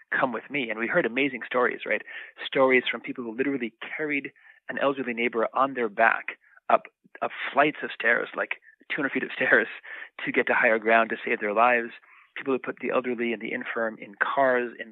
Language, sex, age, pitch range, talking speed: English, male, 30-49, 115-130 Hz, 205 wpm